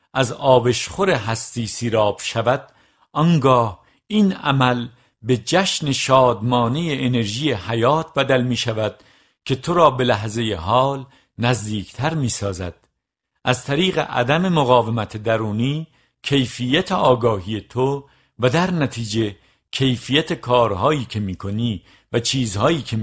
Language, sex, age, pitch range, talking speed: Persian, male, 50-69, 110-140 Hz, 115 wpm